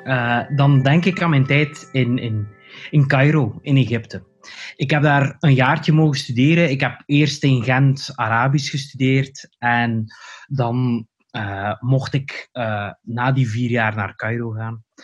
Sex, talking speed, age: male, 155 wpm, 20-39